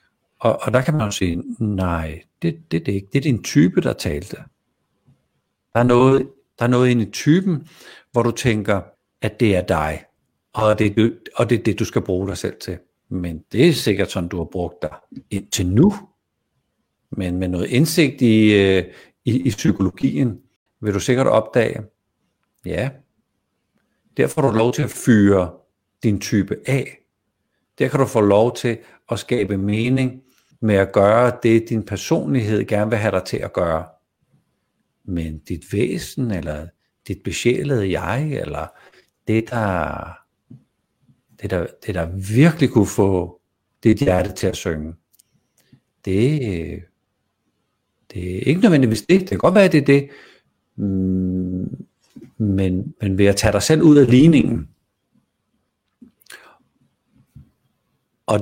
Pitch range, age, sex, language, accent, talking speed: 95-125 Hz, 60-79, male, Danish, native, 150 wpm